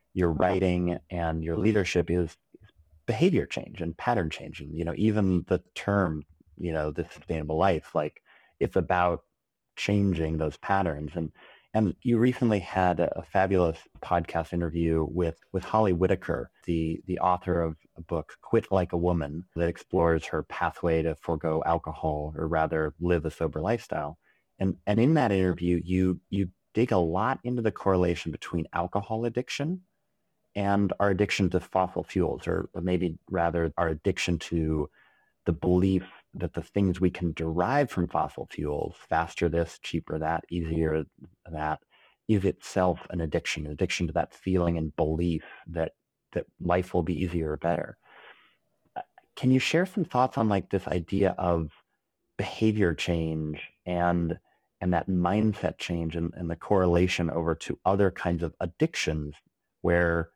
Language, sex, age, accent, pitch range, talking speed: English, male, 30-49, American, 80-95 Hz, 155 wpm